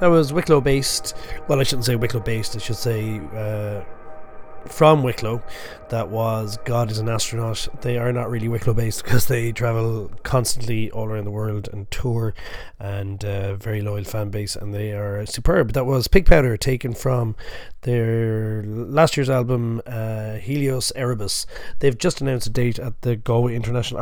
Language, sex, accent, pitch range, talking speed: English, male, Irish, 110-135 Hz, 175 wpm